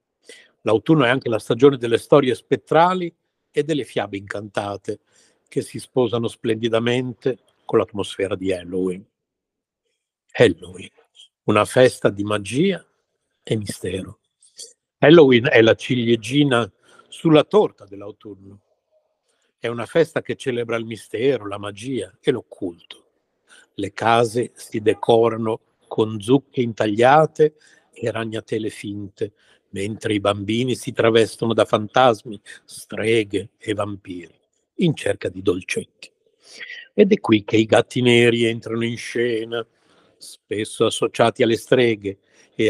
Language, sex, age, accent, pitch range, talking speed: Italian, male, 60-79, native, 105-135 Hz, 120 wpm